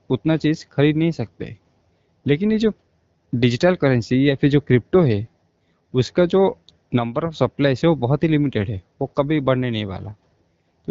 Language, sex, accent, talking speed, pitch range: Hindi, male, native, 175 wpm, 115-150 Hz